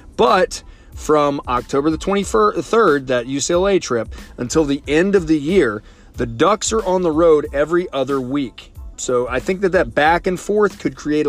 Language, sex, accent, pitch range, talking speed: English, male, American, 135-175 Hz, 175 wpm